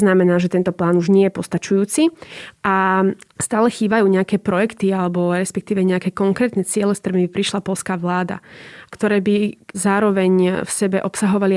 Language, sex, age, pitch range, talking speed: Slovak, female, 30-49, 180-200 Hz, 150 wpm